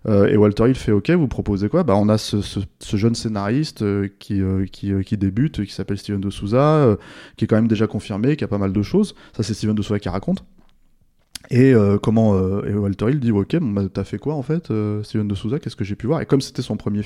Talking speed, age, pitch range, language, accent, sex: 280 wpm, 20-39, 100-125 Hz, French, French, male